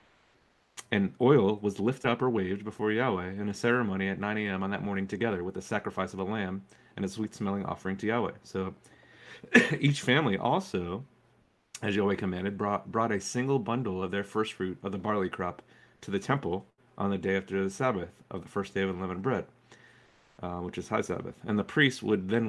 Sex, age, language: male, 30-49, English